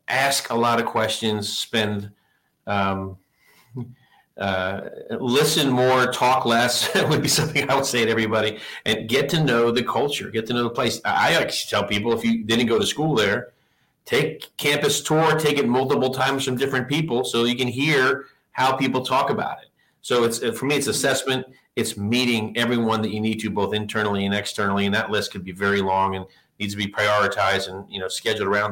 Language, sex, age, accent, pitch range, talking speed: English, male, 40-59, American, 105-130 Hz, 200 wpm